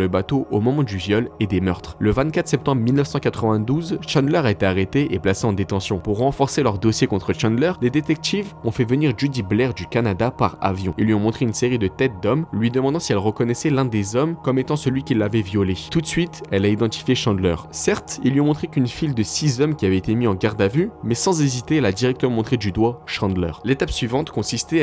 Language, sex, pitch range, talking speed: French, male, 105-140 Hz, 240 wpm